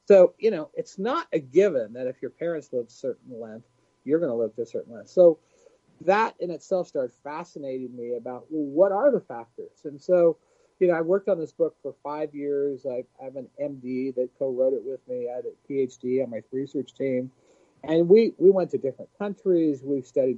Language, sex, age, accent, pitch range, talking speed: English, male, 40-59, American, 130-195 Hz, 220 wpm